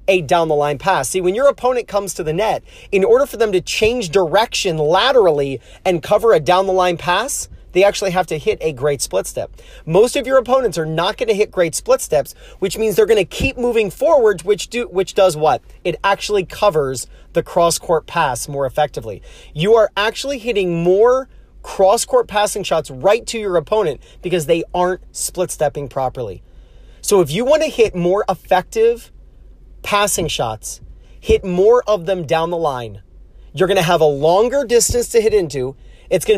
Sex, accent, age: male, American, 30-49